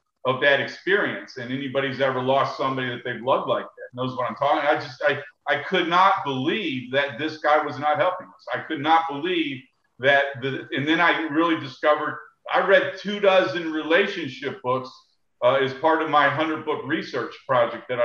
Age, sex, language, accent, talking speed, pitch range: 50-69, male, English, American, 190 wpm, 135-170 Hz